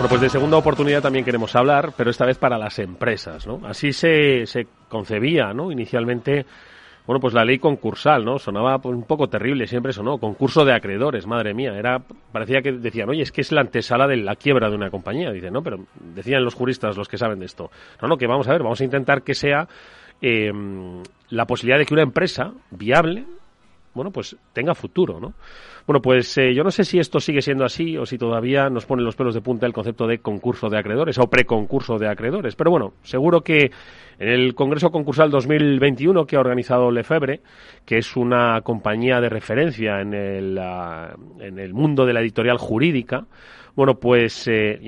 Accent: Spanish